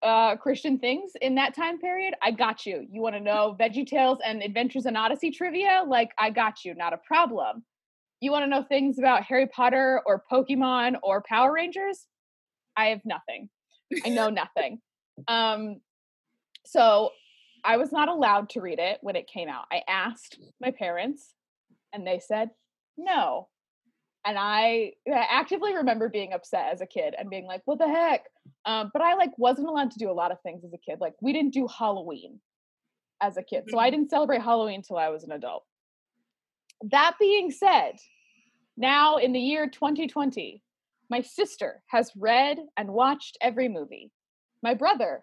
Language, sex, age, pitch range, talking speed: English, female, 20-39, 220-295 Hz, 180 wpm